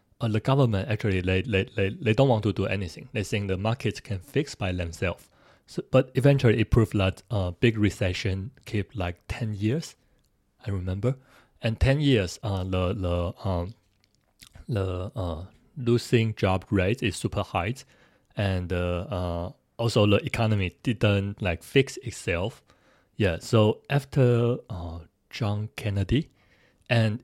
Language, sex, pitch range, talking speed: English, male, 95-120 Hz, 150 wpm